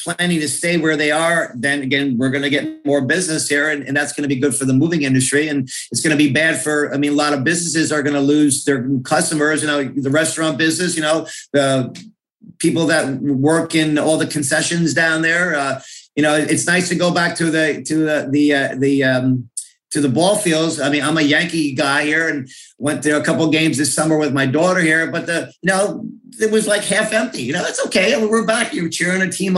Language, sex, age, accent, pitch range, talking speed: English, male, 50-69, American, 140-170 Hz, 245 wpm